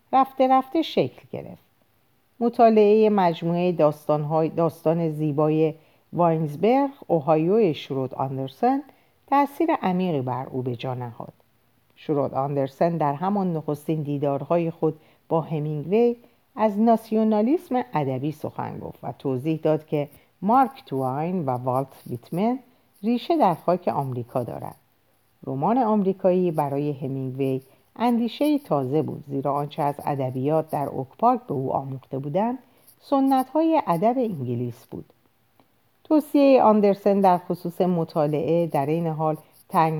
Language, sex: Persian, female